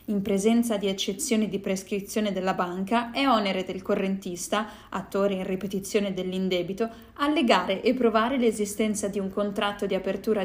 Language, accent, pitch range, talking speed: Italian, native, 190-235 Hz, 145 wpm